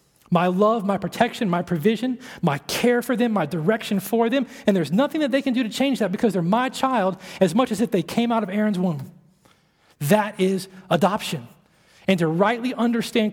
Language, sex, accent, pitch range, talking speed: English, male, American, 190-245 Hz, 205 wpm